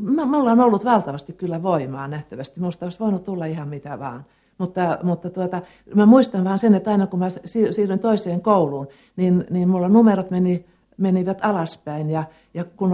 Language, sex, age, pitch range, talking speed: Finnish, female, 60-79, 170-210 Hz, 170 wpm